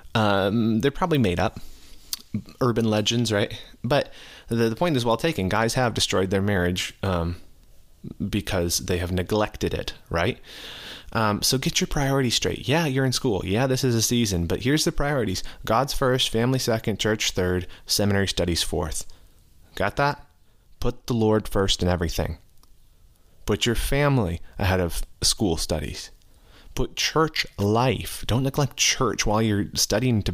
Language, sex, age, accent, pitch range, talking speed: English, male, 30-49, American, 95-125 Hz, 160 wpm